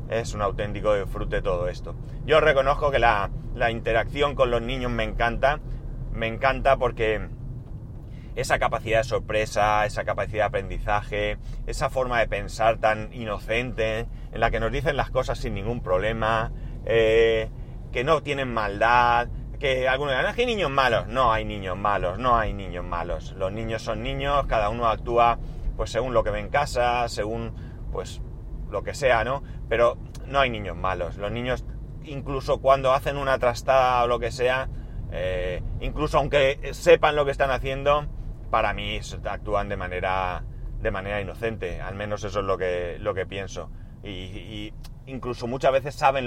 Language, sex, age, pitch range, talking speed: Spanish, male, 30-49, 110-130 Hz, 170 wpm